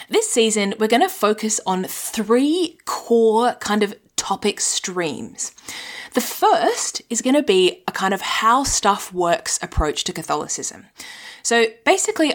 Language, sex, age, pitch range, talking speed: English, female, 20-39, 190-255 Hz, 145 wpm